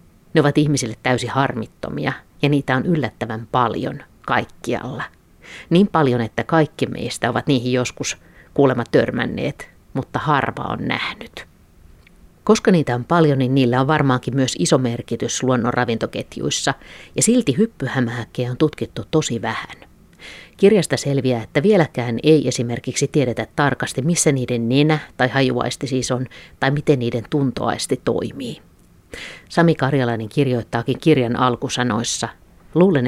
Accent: native